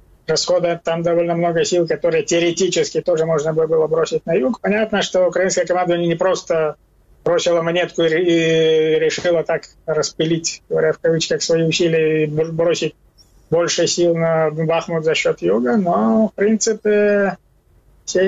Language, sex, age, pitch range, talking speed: Ukrainian, male, 20-39, 165-195 Hz, 140 wpm